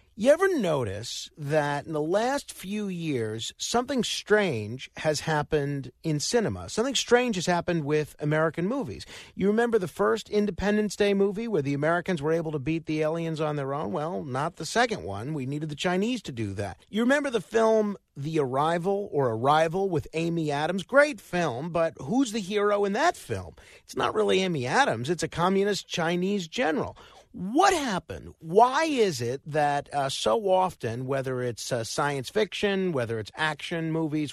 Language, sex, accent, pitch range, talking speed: English, male, American, 150-210 Hz, 175 wpm